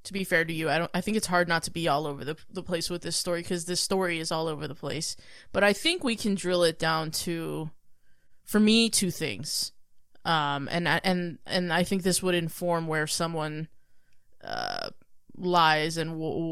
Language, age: English, 20-39